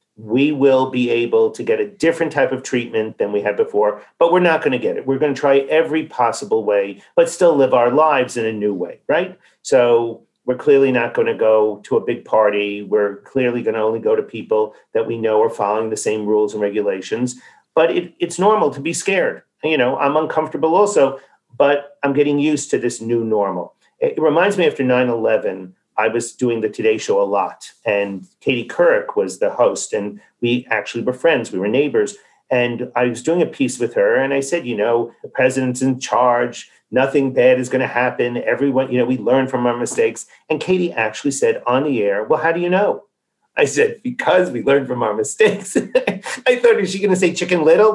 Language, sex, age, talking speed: English, male, 40-59, 220 wpm